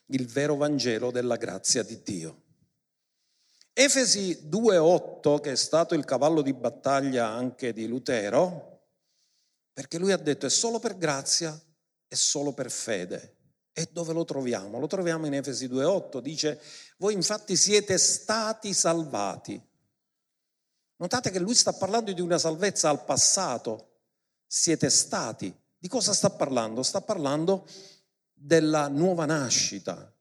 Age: 50-69